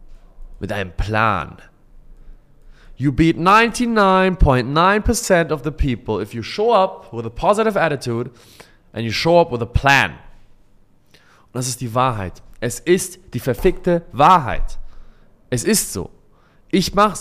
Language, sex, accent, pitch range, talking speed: German, male, German, 110-165 Hz, 135 wpm